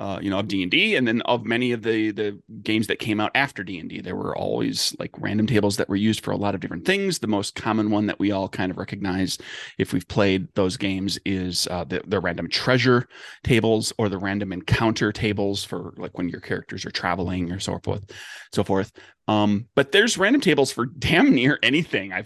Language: English